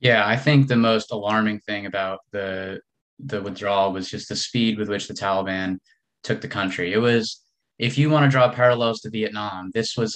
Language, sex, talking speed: English, male, 200 wpm